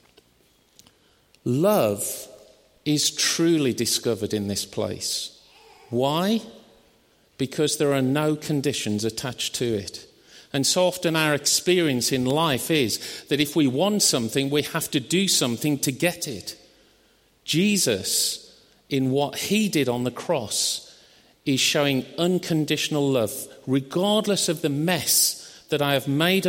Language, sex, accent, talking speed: English, male, British, 130 wpm